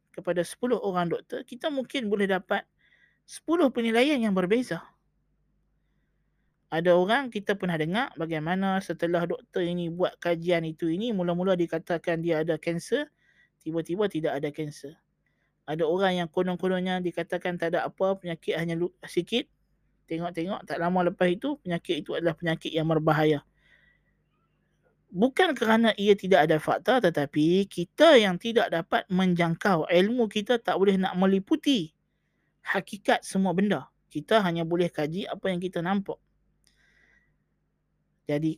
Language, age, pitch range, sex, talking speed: Malay, 20-39, 170-220 Hz, male, 135 wpm